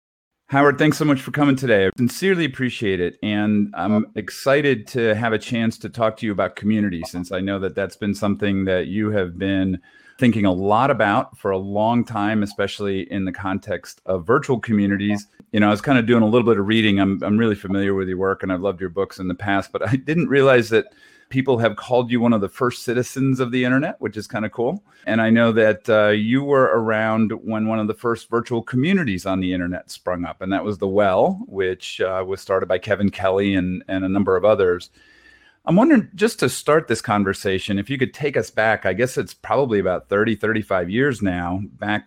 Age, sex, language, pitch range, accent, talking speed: 40-59, male, English, 95-125 Hz, American, 230 wpm